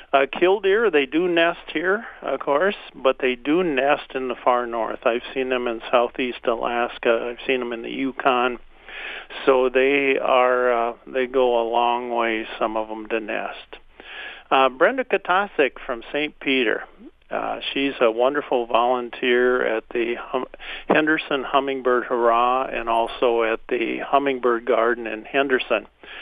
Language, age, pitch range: English, 50-69, 115-135 Hz